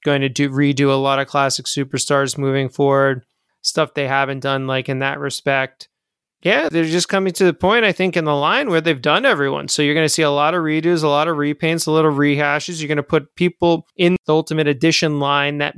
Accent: American